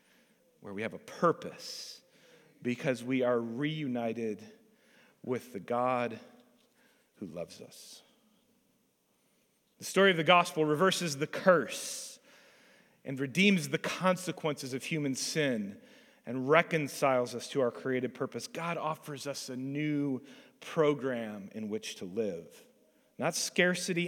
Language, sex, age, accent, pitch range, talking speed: English, male, 40-59, American, 130-205 Hz, 120 wpm